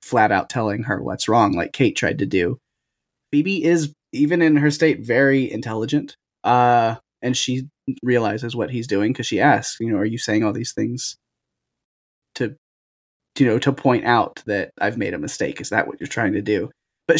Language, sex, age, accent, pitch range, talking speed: English, male, 20-39, American, 110-140 Hz, 200 wpm